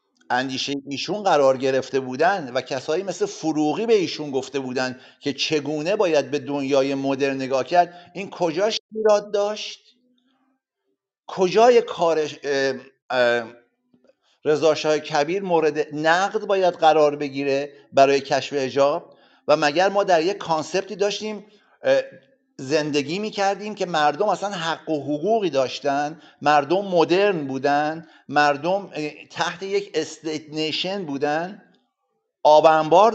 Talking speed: 115 wpm